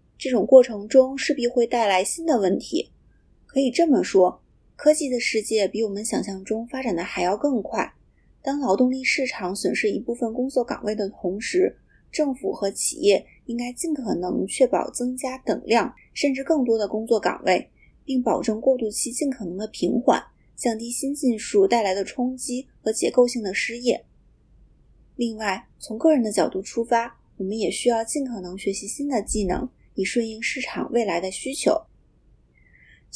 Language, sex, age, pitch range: Chinese, female, 30-49, 205-255 Hz